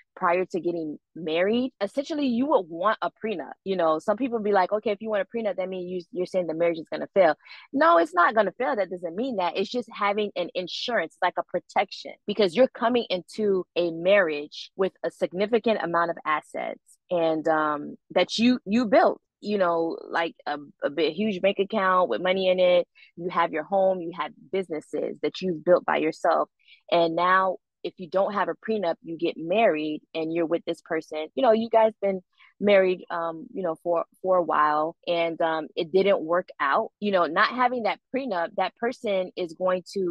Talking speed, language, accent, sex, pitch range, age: 205 wpm, English, American, female, 170-210 Hz, 20-39